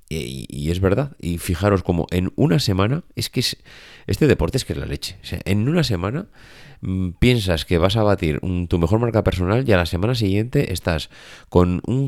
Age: 30-49